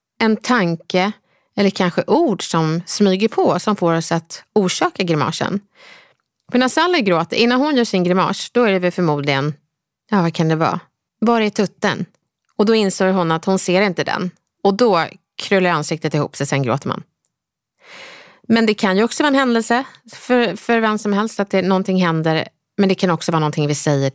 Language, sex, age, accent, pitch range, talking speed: English, female, 30-49, Swedish, 170-225 Hz, 195 wpm